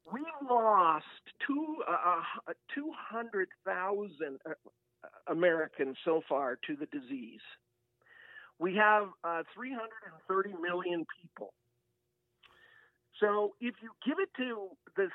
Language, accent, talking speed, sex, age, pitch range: English, American, 95 wpm, male, 50-69, 170-265 Hz